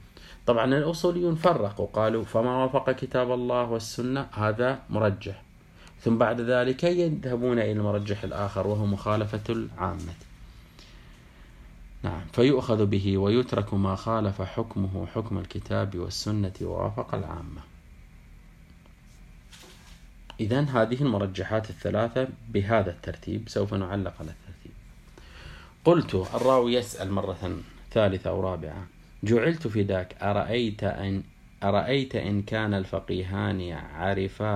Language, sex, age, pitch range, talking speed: Arabic, male, 30-49, 95-115 Hz, 100 wpm